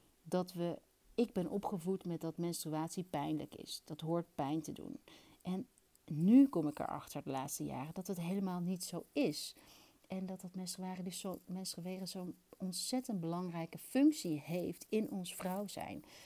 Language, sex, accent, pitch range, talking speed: Dutch, female, Dutch, 160-195 Hz, 165 wpm